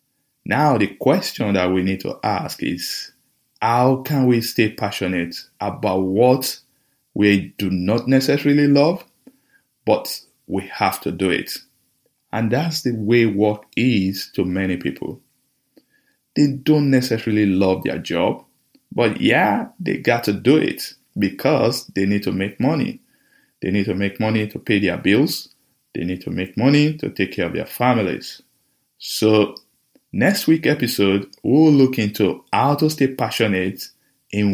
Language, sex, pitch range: English, male, 100-145 Hz